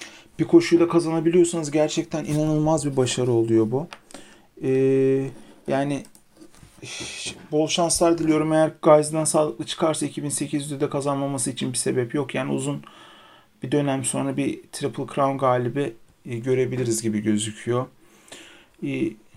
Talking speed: 120 wpm